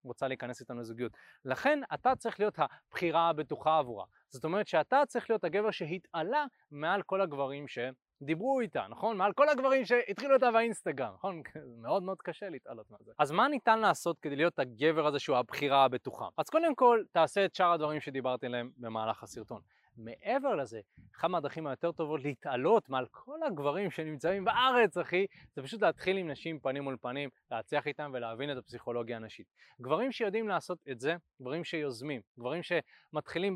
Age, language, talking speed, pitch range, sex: 20-39, Hebrew, 170 wpm, 135-195 Hz, male